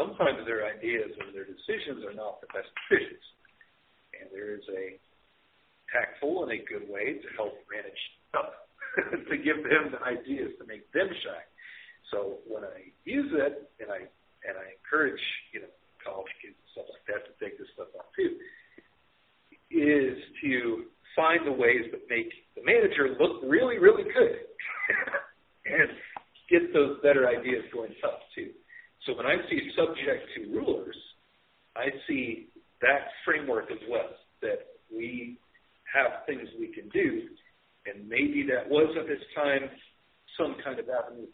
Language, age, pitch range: English, 50-69, 335-465 Hz